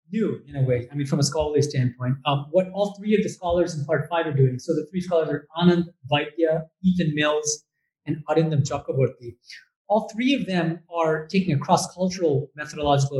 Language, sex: English, male